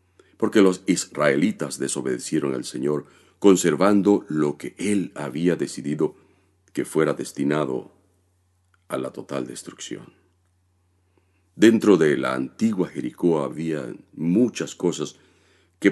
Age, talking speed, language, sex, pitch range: 50-69, 105 wpm, Spanish, male, 70-90 Hz